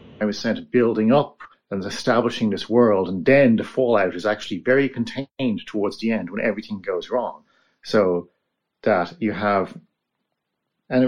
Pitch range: 105-140 Hz